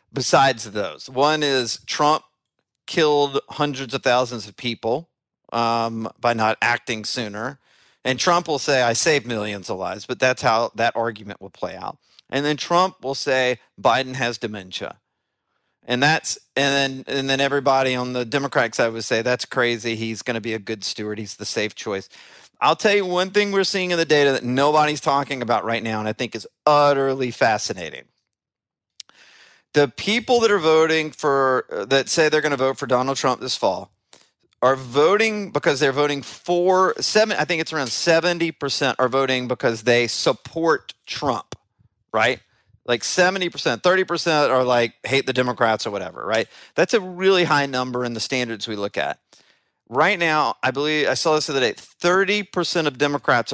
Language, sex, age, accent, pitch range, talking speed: English, male, 40-59, American, 120-155 Hz, 185 wpm